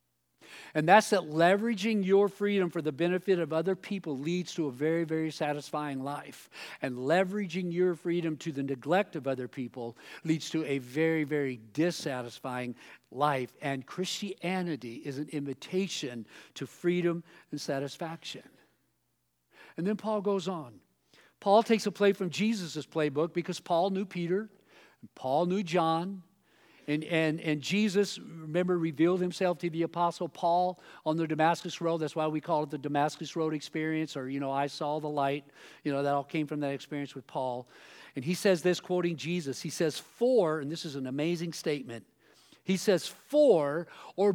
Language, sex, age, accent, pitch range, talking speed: English, male, 50-69, American, 150-185 Hz, 170 wpm